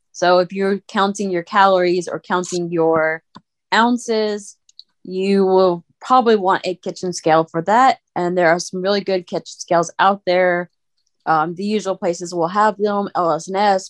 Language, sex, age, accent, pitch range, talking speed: English, female, 20-39, American, 170-200 Hz, 160 wpm